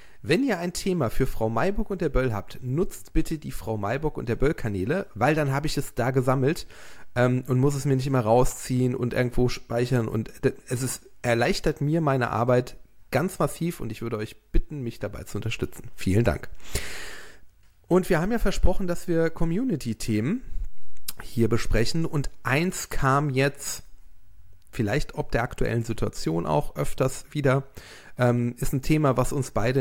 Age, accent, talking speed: 40-59, German, 175 wpm